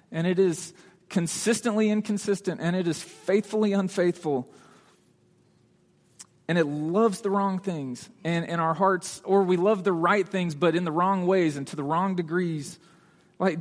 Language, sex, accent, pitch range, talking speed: English, male, American, 145-190 Hz, 165 wpm